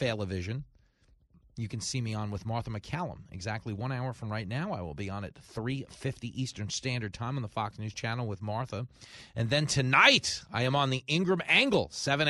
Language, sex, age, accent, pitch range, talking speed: English, male, 30-49, American, 105-135 Hz, 195 wpm